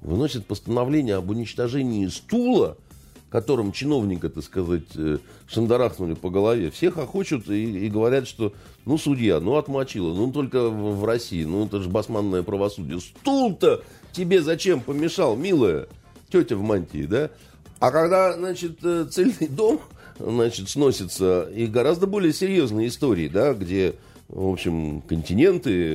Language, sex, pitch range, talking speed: Russian, male, 85-125 Hz, 135 wpm